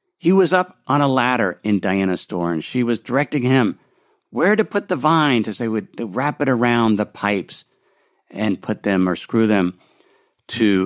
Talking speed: 190 wpm